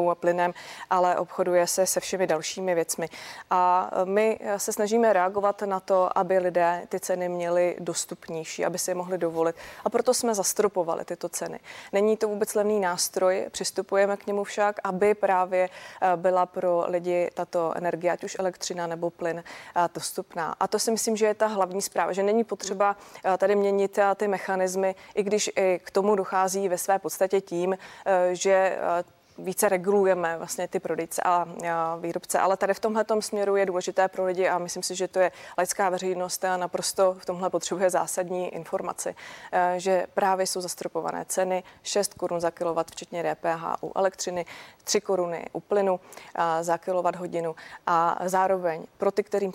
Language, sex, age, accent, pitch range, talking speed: Czech, female, 20-39, native, 175-195 Hz, 165 wpm